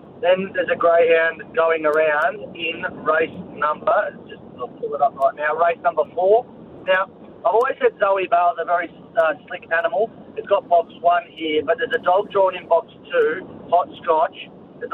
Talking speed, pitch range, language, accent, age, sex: 190 wpm, 155-225 Hz, English, Australian, 30-49, male